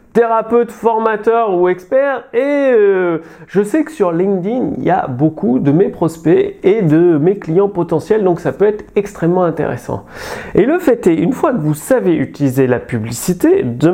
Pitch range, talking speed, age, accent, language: 165-235 Hz, 180 wpm, 30-49, French, French